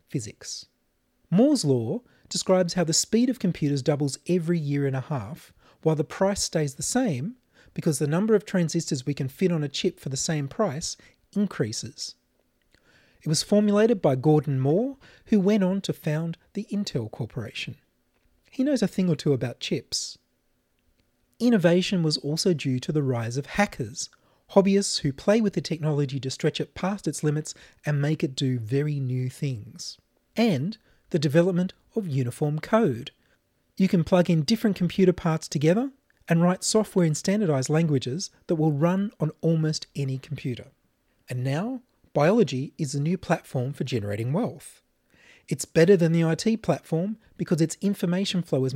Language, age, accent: English, 30-49, Australian